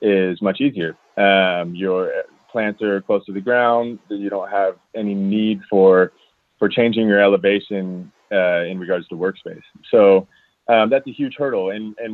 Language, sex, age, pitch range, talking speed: English, male, 20-39, 95-120 Hz, 170 wpm